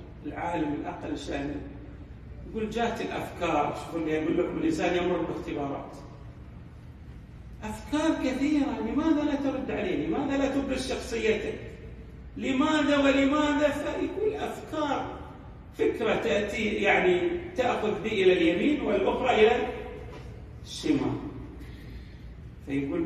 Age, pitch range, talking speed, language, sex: 40-59, 190-275 Hz, 95 wpm, Arabic, male